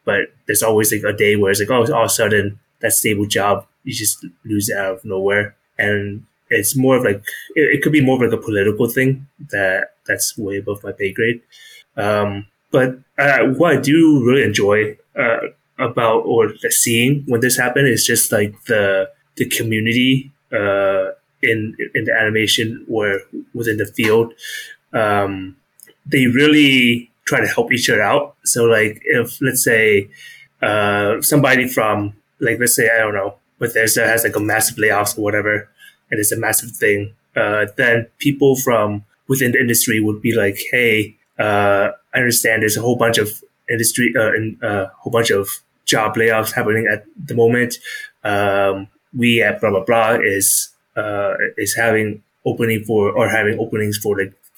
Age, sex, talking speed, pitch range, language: 20-39, male, 180 wpm, 105-125 Hz, English